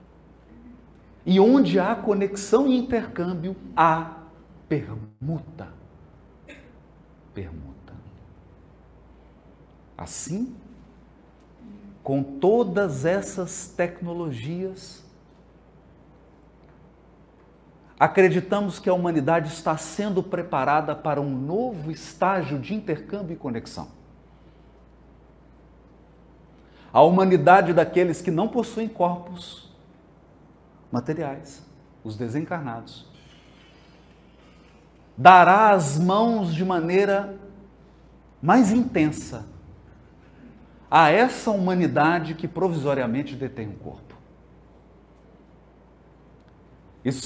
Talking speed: 70 wpm